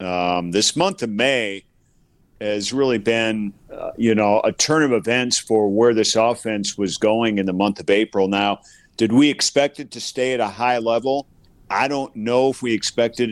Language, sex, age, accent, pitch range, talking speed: English, male, 50-69, American, 100-125 Hz, 195 wpm